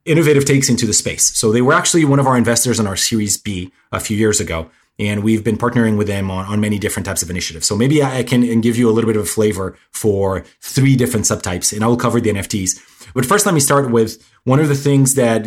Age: 30-49